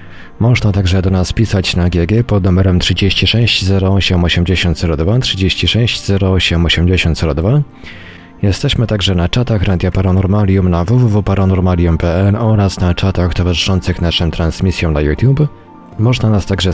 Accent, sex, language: native, male, Polish